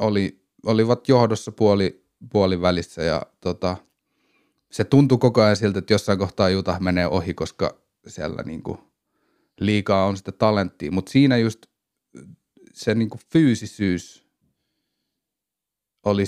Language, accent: Finnish, native